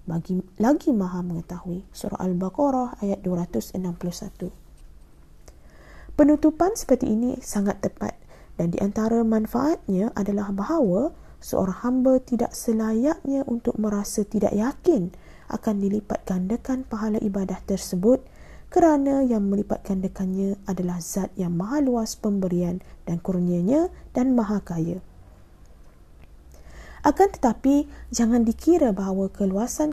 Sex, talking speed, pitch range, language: female, 105 wpm, 185-255 Hz, Malay